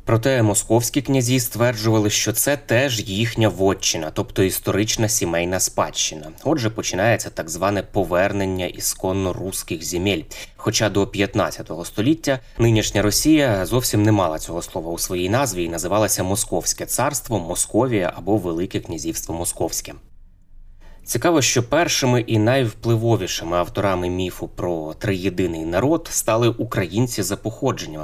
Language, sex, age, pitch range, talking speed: Ukrainian, male, 20-39, 90-110 Hz, 125 wpm